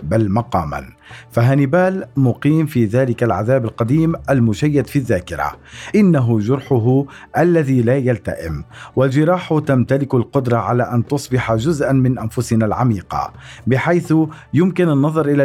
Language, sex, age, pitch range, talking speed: Arabic, male, 50-69, 120-150 Hz, 115 wpm